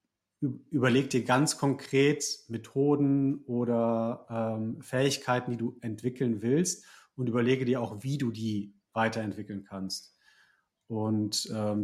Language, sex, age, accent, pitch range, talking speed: German, male, 40-59, German, 110-130 Hz, 115 wpm